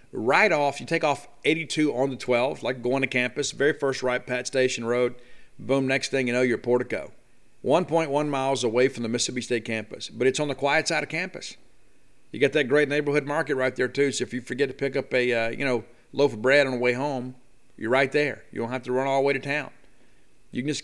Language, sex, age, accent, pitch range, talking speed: English, male, 40-59, American, 125-145 Hz, 245 wpm